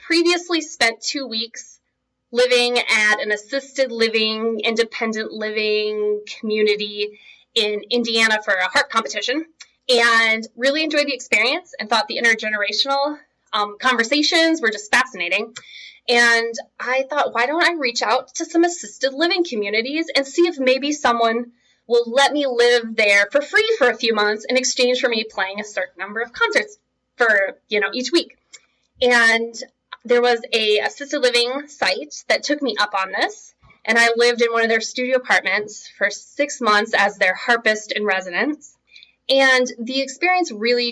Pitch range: 215-270 Hz